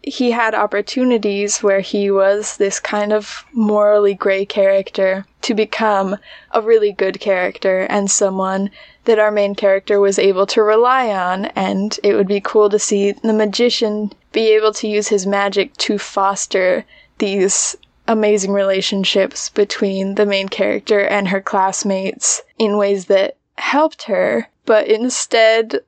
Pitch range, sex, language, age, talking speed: 200-245 Hz, female, English, 10-29, 145 wpm